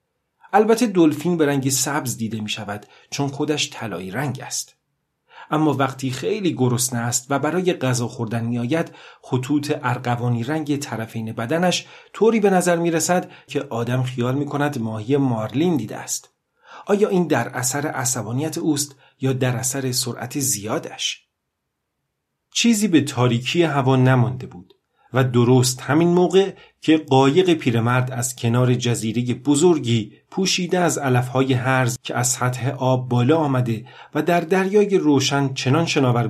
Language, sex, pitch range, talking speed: Persian, male, 120-155 Hz, 140 wpm